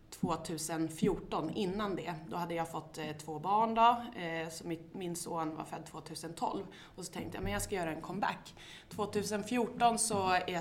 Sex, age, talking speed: female, 20-39, 180 wpm